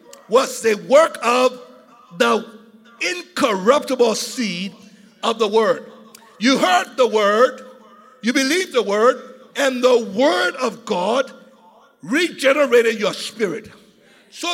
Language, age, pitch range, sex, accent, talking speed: English, 60-79, 205-275 Hz, male, American, 110 wpm